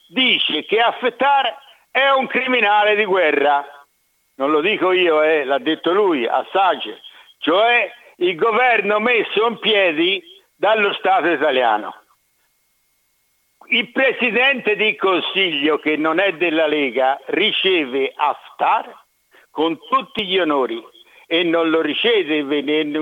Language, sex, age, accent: Italian, male, 60-79, native